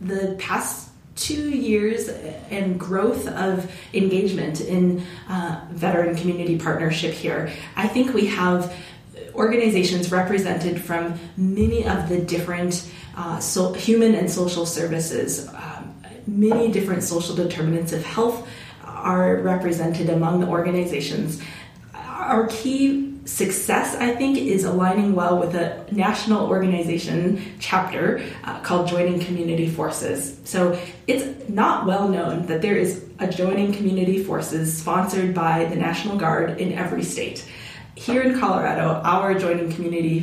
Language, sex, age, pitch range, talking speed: English, female, 20-39, 165-195 Hz, 130 wpm